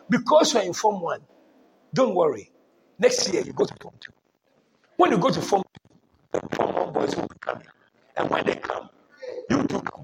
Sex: male